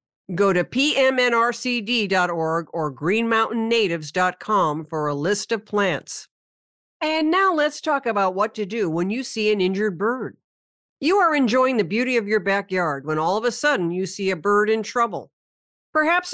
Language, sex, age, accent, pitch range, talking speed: English, female, 50-69, American, 185-250 Hz, 160 wpm